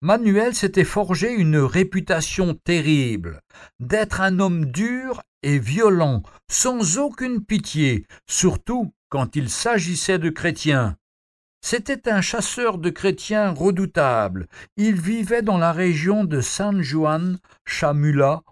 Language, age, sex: French, 60-79, male